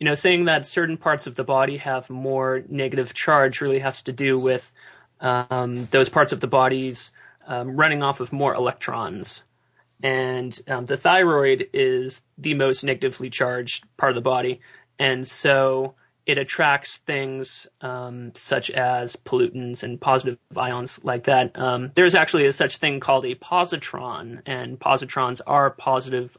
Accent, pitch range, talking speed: American, 125-140 Hz, 160 wpm